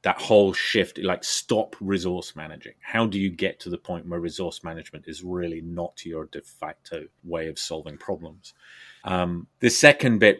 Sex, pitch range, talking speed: male, 90-115 Hz, 180 wpm